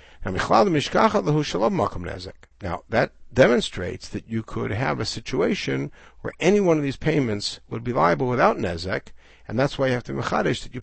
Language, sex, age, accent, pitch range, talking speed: English, male, 60-79, American, 95-125 Hz, 165 wpm